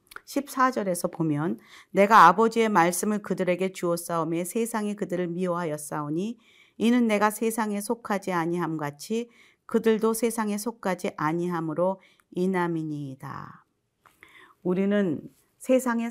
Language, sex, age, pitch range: Korean, female, 40-59, 170-230 Hz